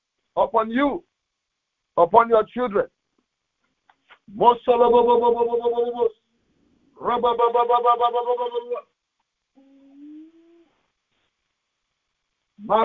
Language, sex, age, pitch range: English, male, 50-69, 225-245 Hz